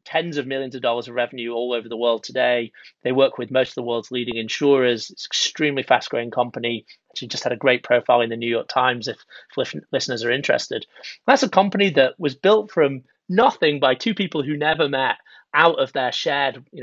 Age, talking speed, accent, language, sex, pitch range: 30-49, 220 wpm, British, English, male, 125-150 Hz